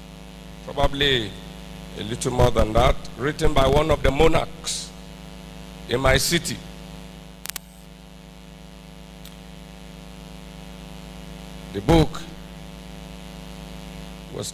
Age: 50-69